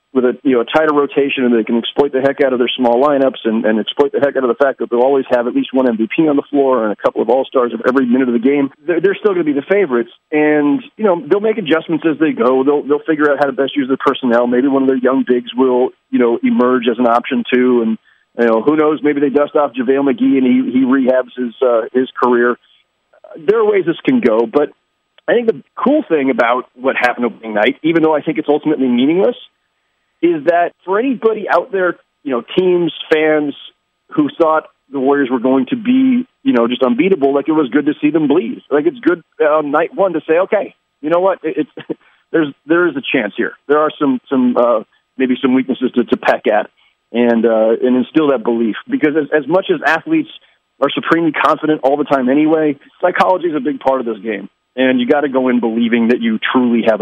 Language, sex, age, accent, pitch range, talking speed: English, male, 40-59, American, 125-160 Hz, 245 wpm